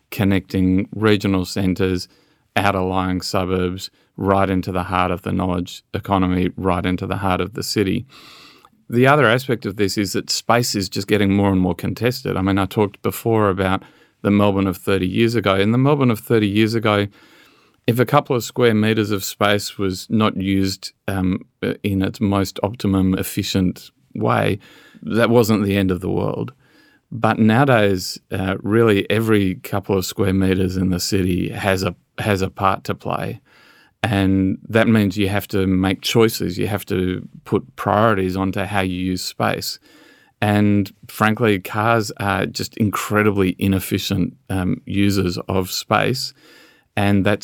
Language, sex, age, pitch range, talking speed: English, male, 40-59, 95-105 Hz, 165 wpm